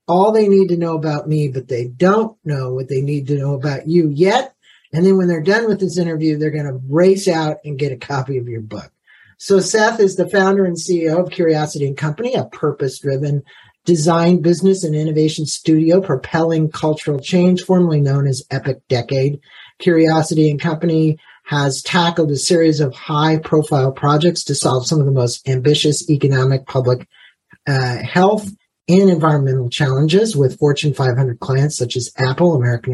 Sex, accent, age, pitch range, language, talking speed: male, American, 50-69, 140-175 Hz, English, 180 wpm